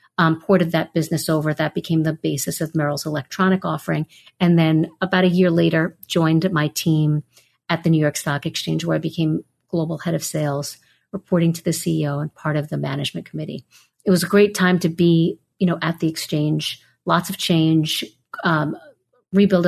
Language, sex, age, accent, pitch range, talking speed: English, female, 50-69, American, 160-190 Hz, 190 wpm